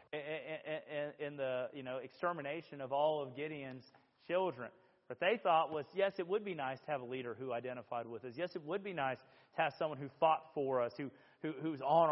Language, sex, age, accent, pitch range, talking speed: English, male, 40-59, American, 140-180 Hz, 215 wpm